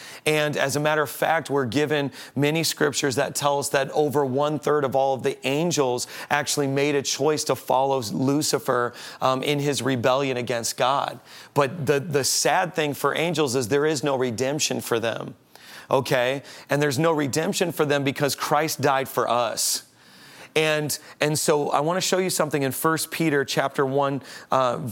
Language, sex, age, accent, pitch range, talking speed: English, male, 30-49, American, 135-170 Hz, 185 wpm